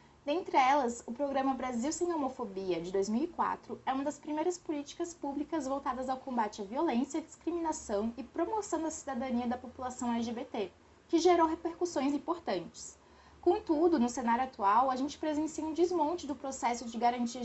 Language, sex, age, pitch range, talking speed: Portuguese, female, 20-39, 245-315 Hz, 155 wpm